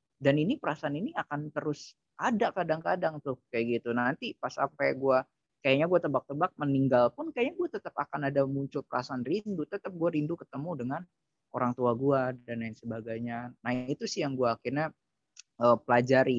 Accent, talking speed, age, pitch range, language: native, 170 wpm, 20-39, 115-140 Hz, Indonesian